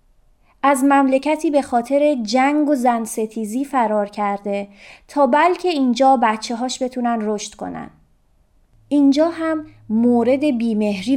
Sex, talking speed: female, 105 wpm